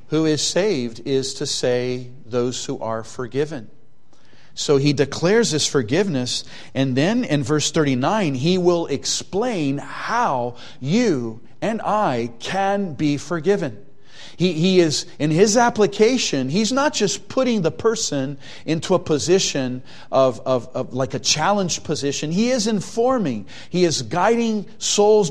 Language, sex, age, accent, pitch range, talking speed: English, male, 40-59, American, 130-185 Hz, 140 wpm